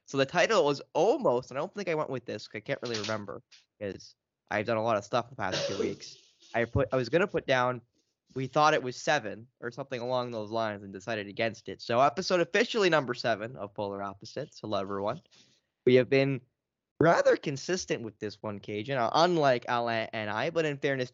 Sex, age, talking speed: male, 10-29, 220 wpm